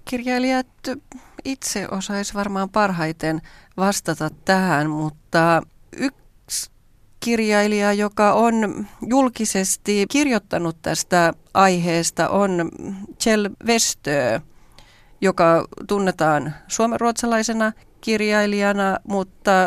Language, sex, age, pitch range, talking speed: Finnish, female, 30-49, 155-195 Hz, 75 wpm